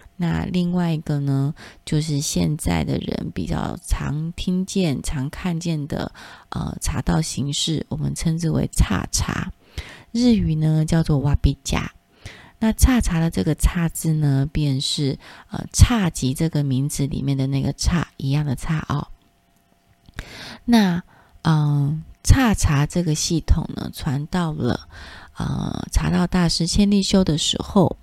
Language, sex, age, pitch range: Chinese, female, 20-39, 135-170 Hz